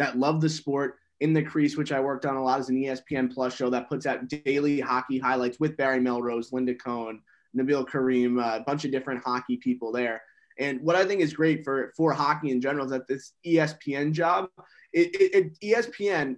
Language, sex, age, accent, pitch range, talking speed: English, male, 20-39, American, 130-155 Hz, 215 wpm